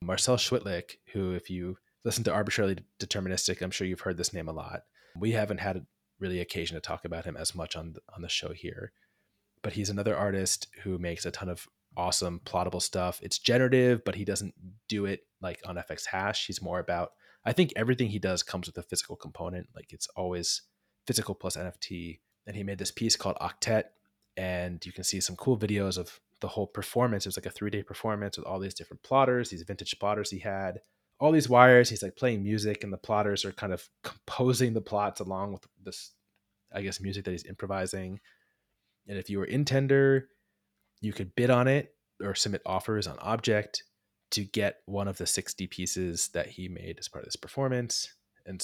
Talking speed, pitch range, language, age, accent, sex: 205 wpm, 90-105 Hz, English, 20-39, American, male